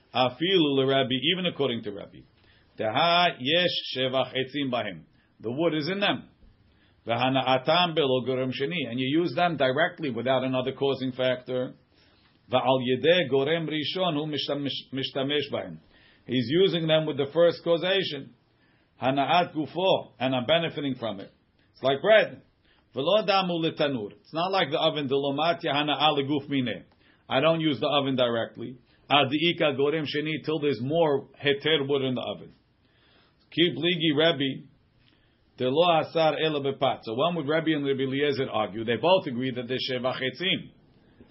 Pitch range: 130-160 Hz